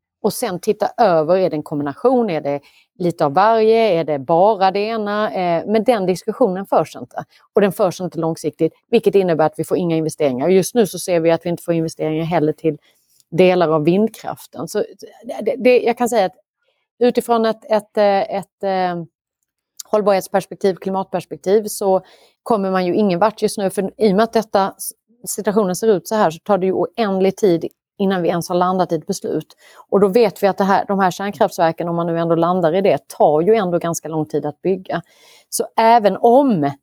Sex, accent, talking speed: female, native, 205 wpm